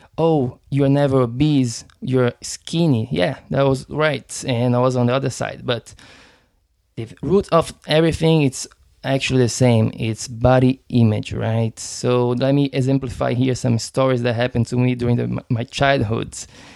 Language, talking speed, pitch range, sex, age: English, 160 wpm, 120-140 Hz, male, 20-39